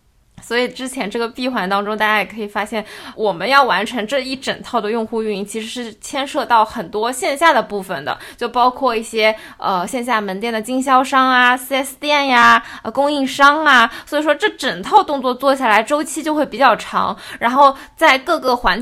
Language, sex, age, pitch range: Chinese, female, 20-39, 225-290 Hz